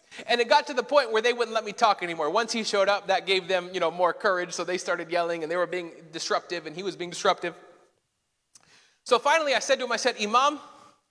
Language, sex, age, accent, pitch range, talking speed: English, male, 30-49, American, 200-260 Hz, 255 wpm